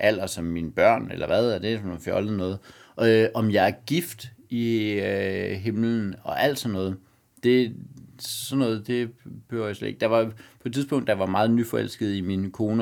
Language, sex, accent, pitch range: Danish, male, native, 95-120 Hz